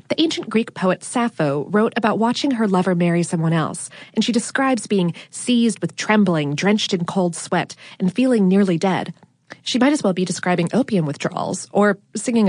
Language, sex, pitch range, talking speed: English, female, 175-230 Hz, 185 wpm